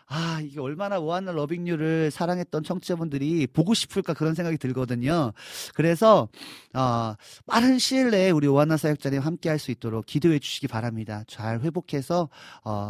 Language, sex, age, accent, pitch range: Korean, male, 40-59, native, 120-170 Hz